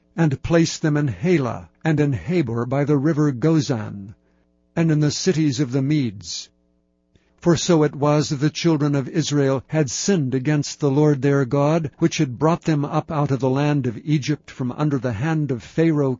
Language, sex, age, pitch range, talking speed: English, male, 60-79, 135-155 Hz, 195 wpm